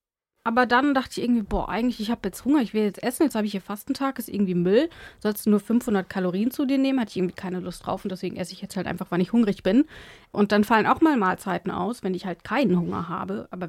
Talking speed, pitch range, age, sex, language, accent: 270 wpm, 205-265 Hz, 30-49, female, German, German